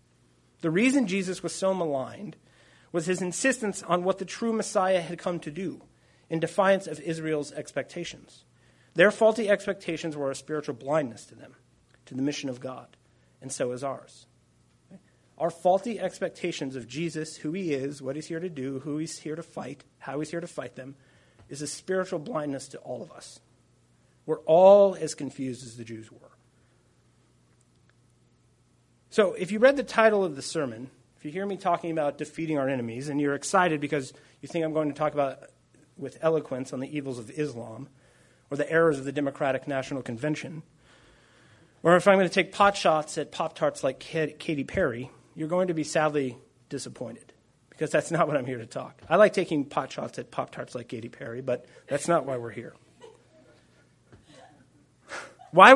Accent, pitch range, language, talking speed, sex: American, 135-180 Hz, English, 185 wpm, male